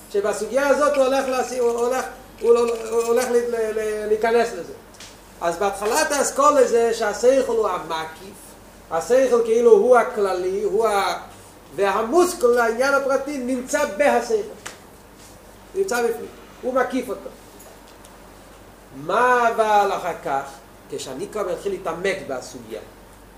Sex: male